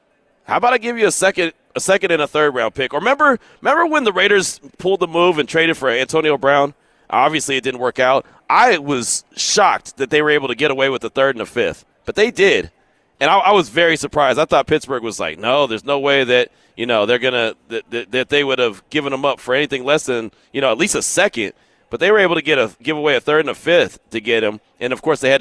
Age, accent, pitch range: 40-59, American, 130-180 Hz